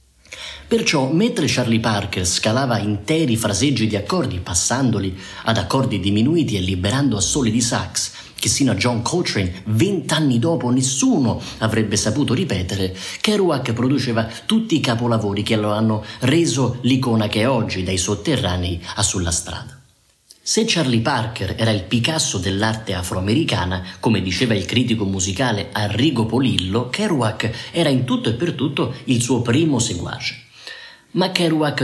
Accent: native